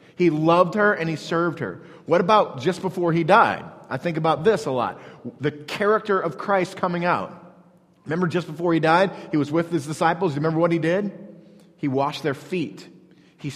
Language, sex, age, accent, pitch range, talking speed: English, male, 30-49, American, 160-205 Hz, 195 wpm